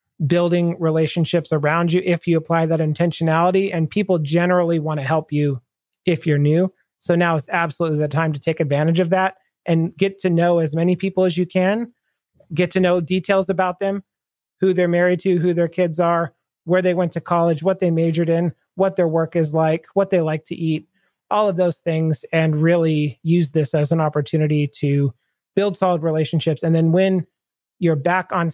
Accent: American